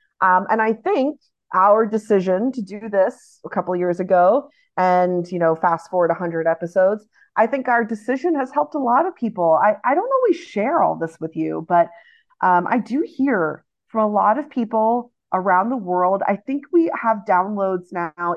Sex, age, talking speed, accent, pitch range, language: female, 30-49, 195 wpm, American, 180-275 Hz, English